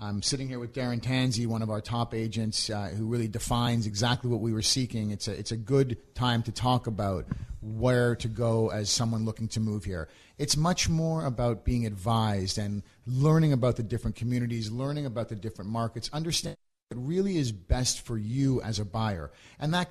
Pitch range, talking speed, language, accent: 110-135 Hz, 200 wpm, English, American